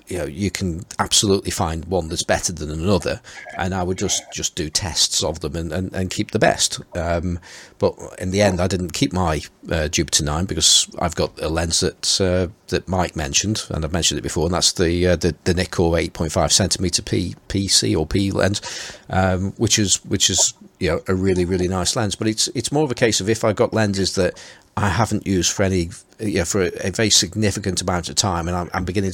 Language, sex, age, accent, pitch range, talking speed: English, male, 40-59, British, 85-105 Hz, 225 wpm